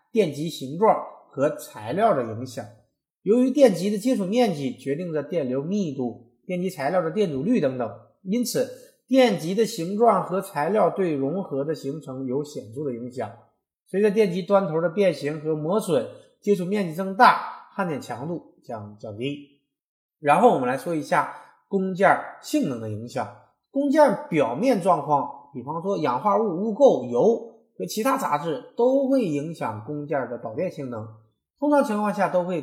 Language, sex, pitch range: Chinese, male, 135-205 Hz